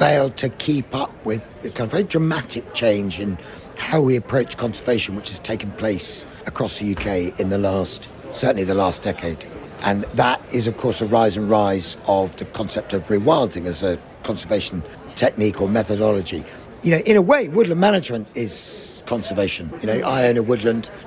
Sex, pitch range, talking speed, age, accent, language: male, 105-135 Hz, 185 wpm, 50-69, British, English